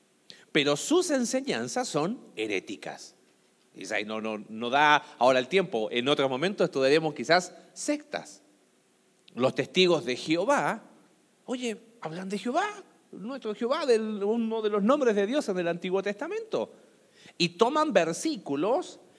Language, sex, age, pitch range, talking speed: Spanish, male, 40-59, 155-235 Hz, 125 wpm